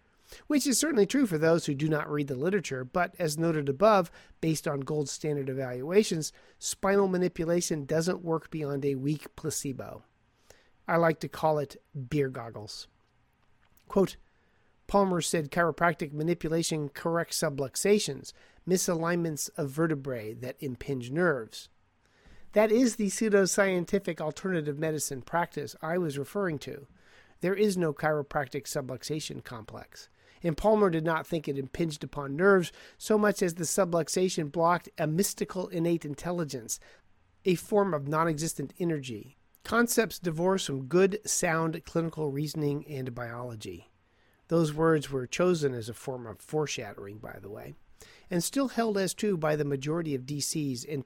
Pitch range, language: 140-180 Hz, English